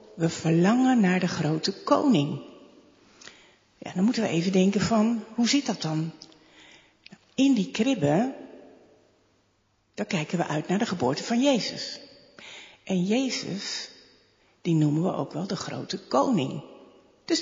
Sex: female